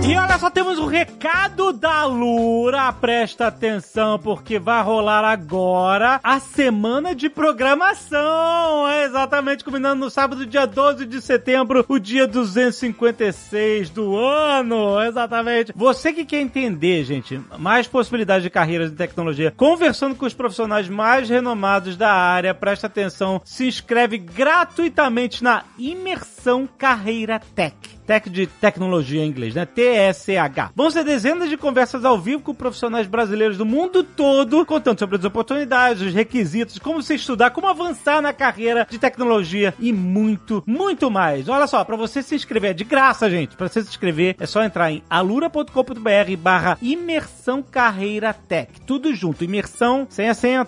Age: 30-49